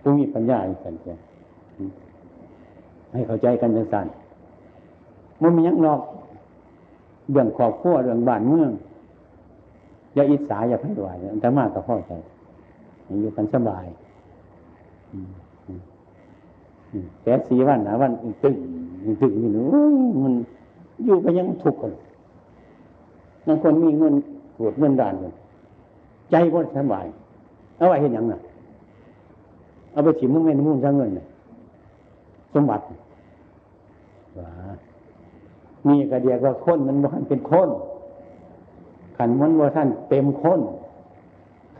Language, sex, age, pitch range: Chinese, male, 60-79, 100-145 Hz